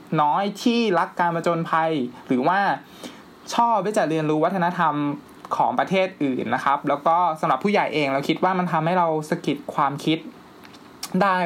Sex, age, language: male, 20-39, Thai